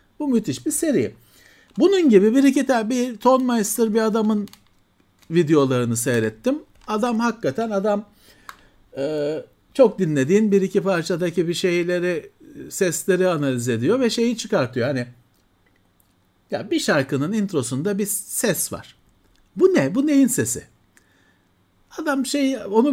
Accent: native